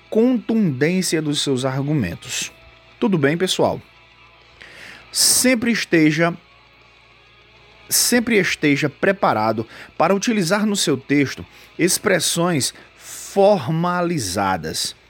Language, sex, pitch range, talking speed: Portuguese, male, 130-180 Hz, 75 wpm